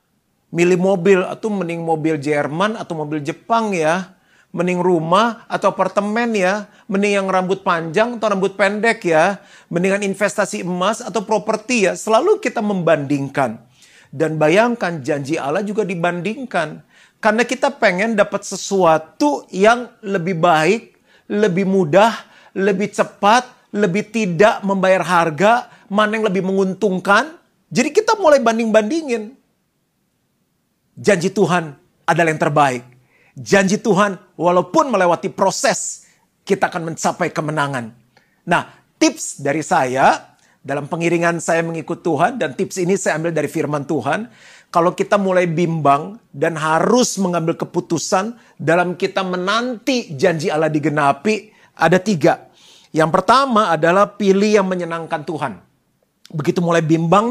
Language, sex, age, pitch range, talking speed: Indonesian, male, 40-59, 170-215 Hz, 125 wpm